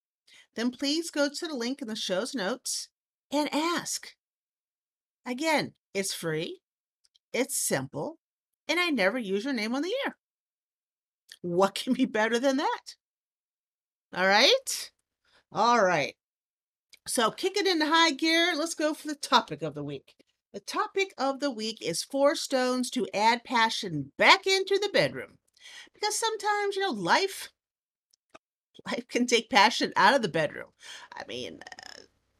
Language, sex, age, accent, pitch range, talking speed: English, female, 50-69, American, 190-310 Hz, 150 wpm